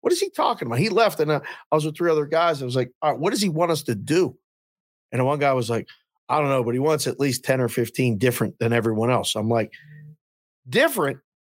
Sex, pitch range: male, 120-150 Hz